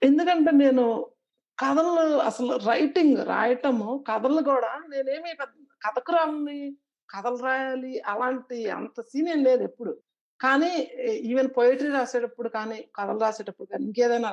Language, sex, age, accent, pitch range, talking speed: Telugu, female, 50-69, native, 225-285 Hz, 115 wpm